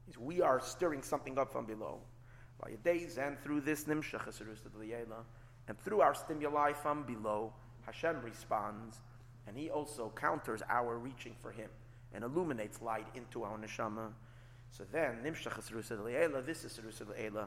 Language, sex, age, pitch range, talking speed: English, male, 30-49, 120-140 Hz, 125 wpm